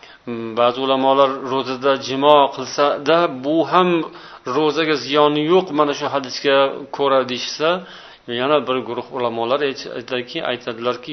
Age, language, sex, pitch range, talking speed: 40-59, Bulgarian, male, 120-150 Hz, 115 wpm